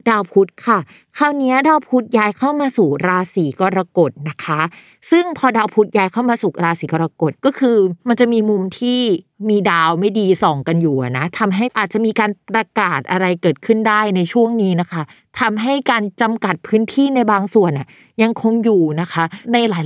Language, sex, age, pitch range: Thai, female, 20-39, 180-230 Hz